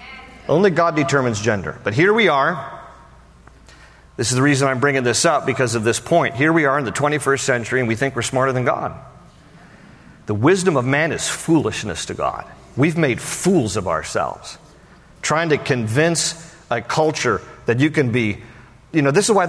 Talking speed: 190 wpm